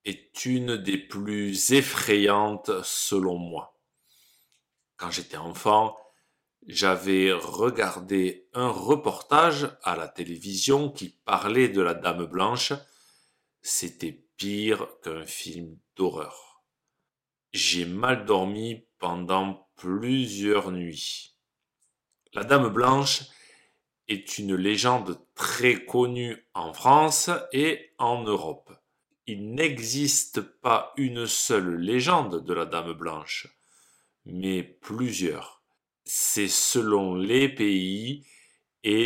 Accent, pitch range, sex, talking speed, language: French, 95-130 Hz, male, 100 wpm, French